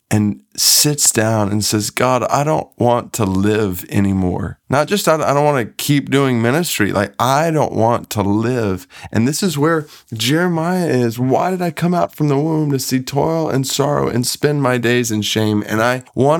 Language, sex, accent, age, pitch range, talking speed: English, male, American, 20-39, 105-135 Hz, 205 wpm